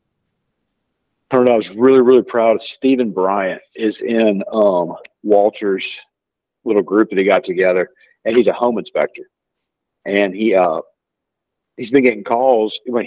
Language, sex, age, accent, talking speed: English, male, 50-69, American, 140 wpm